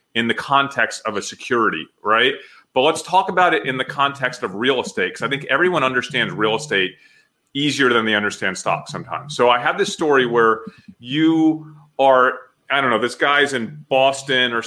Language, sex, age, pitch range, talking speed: English, male, 30-49, 120-155 Hz, 190 wpm